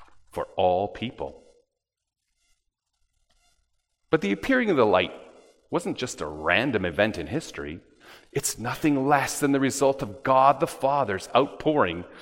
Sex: male